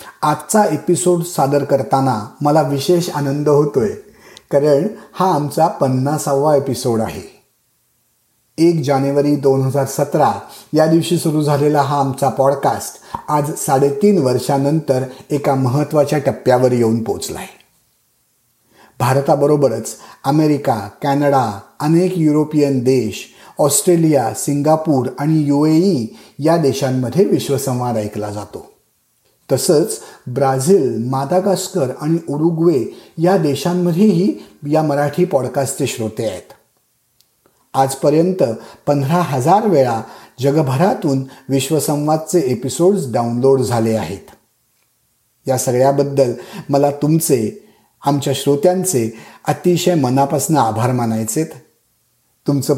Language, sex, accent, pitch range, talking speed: Marathi, male, native, 130-155 Hz, 90 wpm